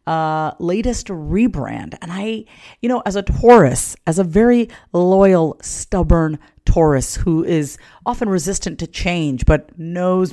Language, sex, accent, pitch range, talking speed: English, female, American, 140-195 Hz, 140 wpm